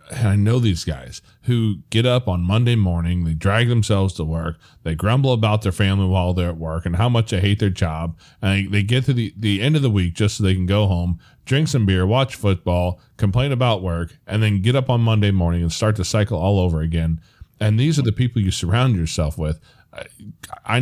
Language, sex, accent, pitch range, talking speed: English, male, American, 90-120 Hz, 230 wpm